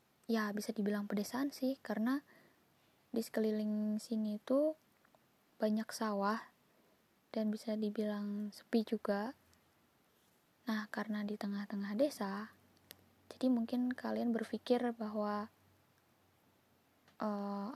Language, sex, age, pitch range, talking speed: Indonesian, female, 20-39, 205-235 Hz, 95 wpm